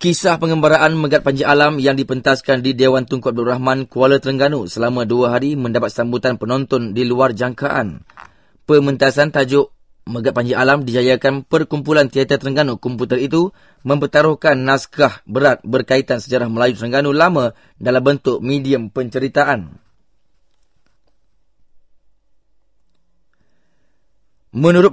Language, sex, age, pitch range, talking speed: English, male, 20-39, 125-145 Hz, 115 wpm